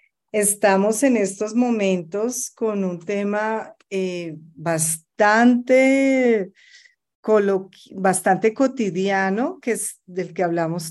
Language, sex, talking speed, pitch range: Spanish, female, 90 wpm, 185-245 Hz